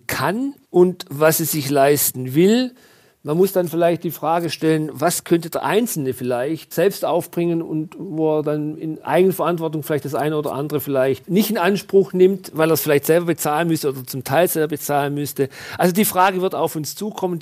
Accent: German